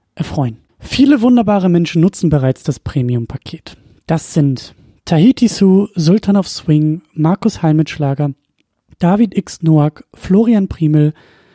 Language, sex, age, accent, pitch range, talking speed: German, male, 30-49, German, 150-195 Hz, 115 wpm